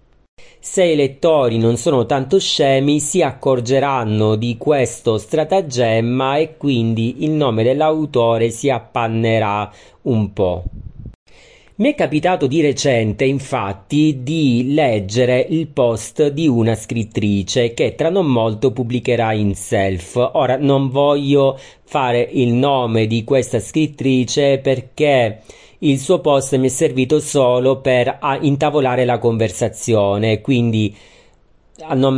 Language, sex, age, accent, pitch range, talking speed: Italian, male, 40-59, native, 115-145 Hz, 120 wpm